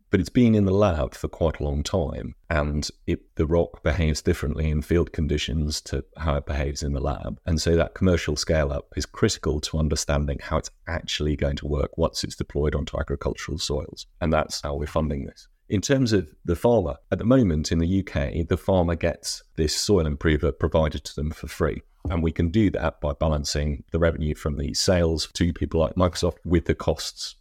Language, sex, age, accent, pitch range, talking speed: English, male, 30-49, British, 75-85 Hz, 205 wpm